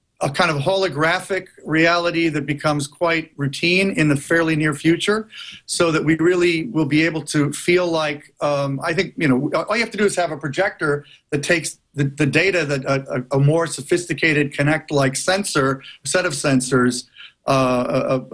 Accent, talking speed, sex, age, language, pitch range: American, 175 wpm, male, 40-59, English, 140-185 Hz